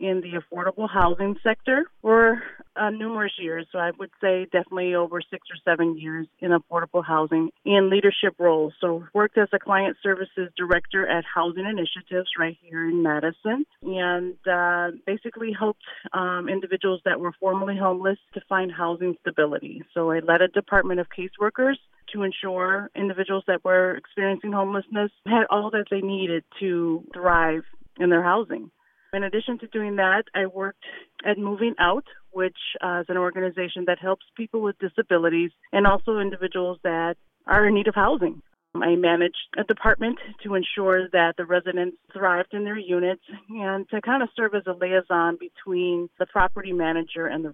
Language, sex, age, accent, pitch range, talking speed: English, female, 30-49, American, 175-200 Hz, 165 wpm